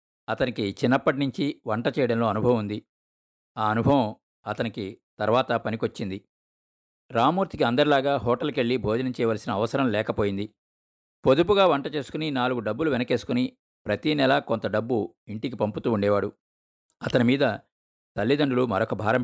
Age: 50-69